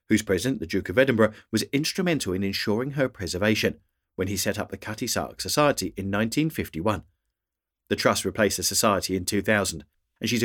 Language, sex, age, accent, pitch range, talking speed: English, male, 40-59, British, 95-120 Hz, 180 wpm